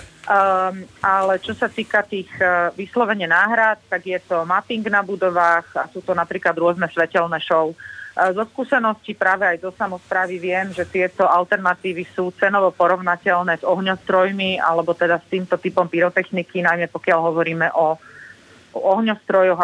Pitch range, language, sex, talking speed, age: 170-195 Hz, Slovak, female, 150 wpm, 30-49